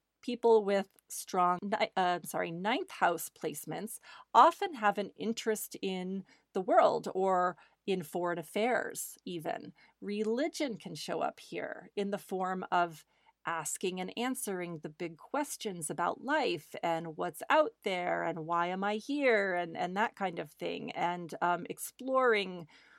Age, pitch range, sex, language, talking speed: 40-59, 180-225 Hz, female, English, 145 wpm